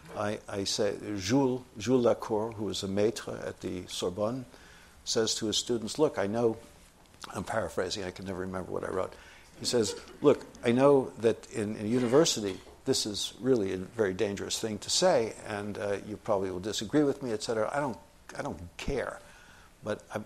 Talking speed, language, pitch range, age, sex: 185 wpm, English, 100-120 Hz, 60-79, male